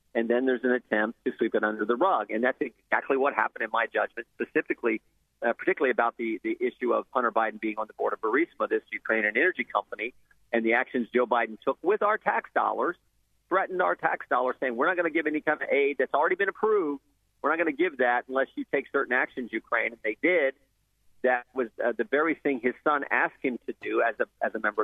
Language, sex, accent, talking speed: English, male, American, 240 wpm